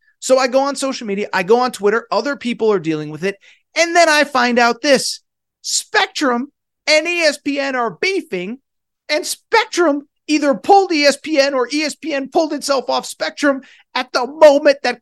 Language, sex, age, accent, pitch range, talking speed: English, male, 30-49, American, 210-300 Hz, 170 wpm